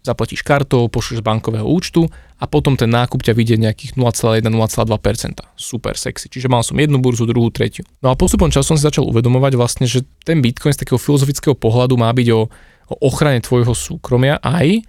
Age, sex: 20-39, male